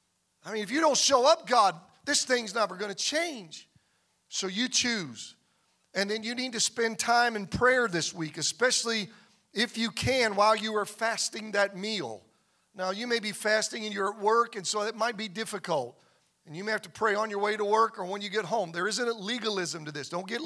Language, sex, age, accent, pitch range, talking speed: English, male, 40-59, American, 180-225 Hz, 225 wpm